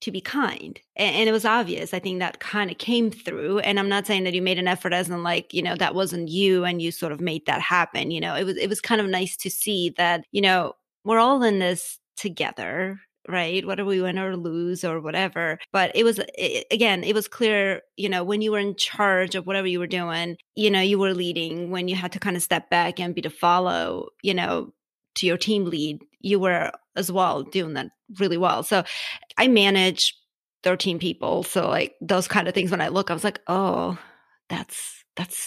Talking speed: 230 wpm